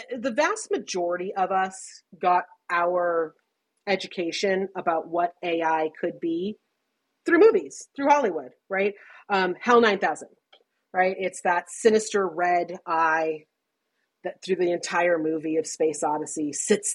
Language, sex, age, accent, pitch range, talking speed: English, female, 30-49, American, 170-220 Hz, 125 wpm